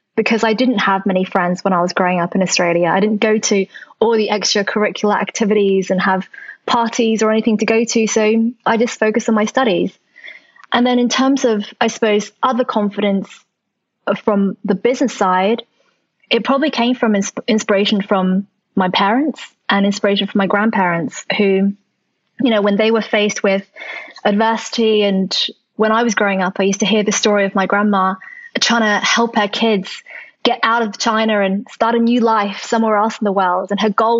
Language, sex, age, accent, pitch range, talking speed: English, female, 20-39, British, 200-235 Hz, 190 wpm